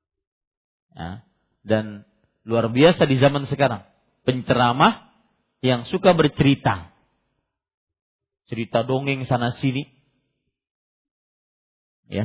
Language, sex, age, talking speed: Malay, male, 40-59, 80 wpm